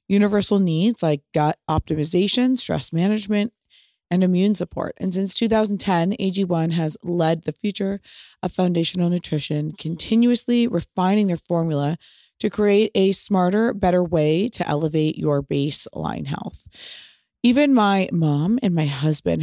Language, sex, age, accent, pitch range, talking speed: English, female, 20-39, American, 160-205 Hz, 130 wpm